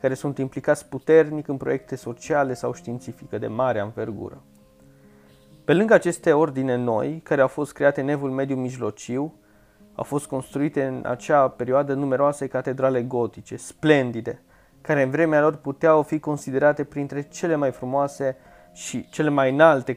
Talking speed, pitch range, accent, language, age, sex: 145 wpm, 110-145 Hz, native, Romanian, 20-39, male